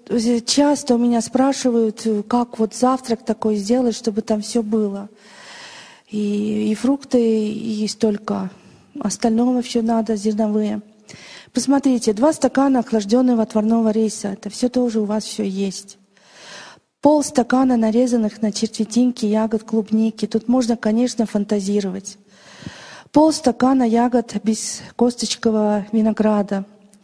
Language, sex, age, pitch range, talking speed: English, female, 40-59, 210-245 Hz, 115 wpm